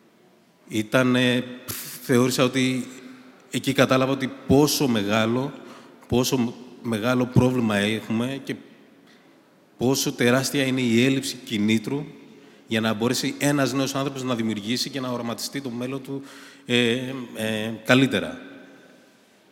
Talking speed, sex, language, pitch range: 100 wpm, male, Greek, 115-140 Hz